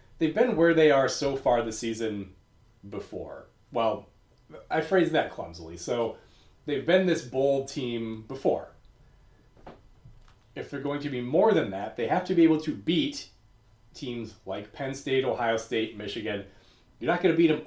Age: 30-49